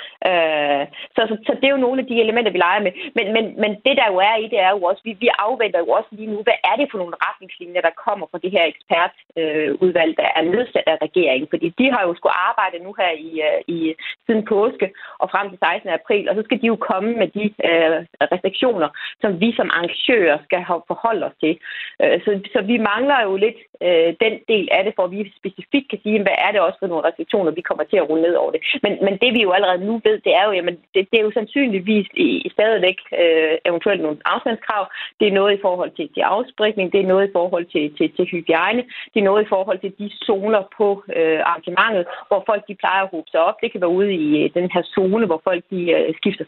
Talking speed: 245 wpm